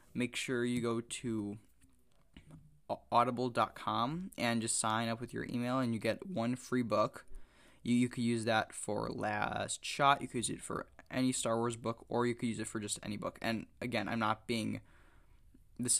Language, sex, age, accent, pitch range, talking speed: English, male, 10-29, American, 110-120 Hz, 190 wpm